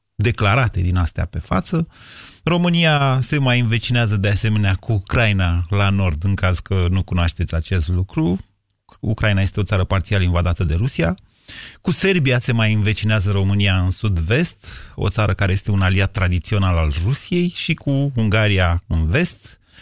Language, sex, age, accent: Romanian, male, 30-49, native